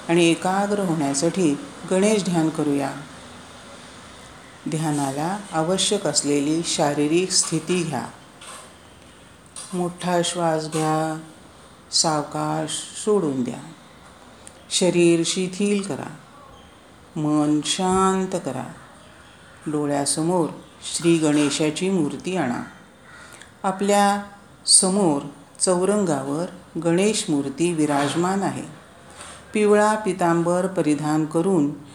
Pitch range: 150-185 Hz